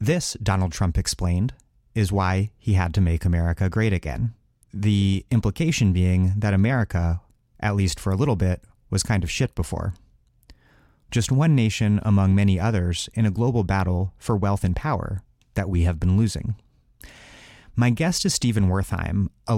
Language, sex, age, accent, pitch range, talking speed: English, male, 30-49, American, 95-115 Hz, 165 wpm